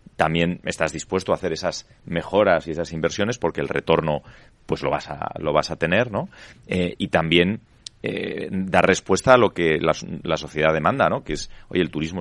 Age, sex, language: 30-49, male, Spanish